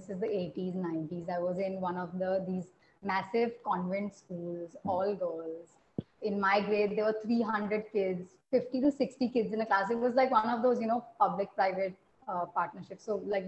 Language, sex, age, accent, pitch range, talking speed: English, female, 30-49, Indian, 195-245 Hz, 195 wpm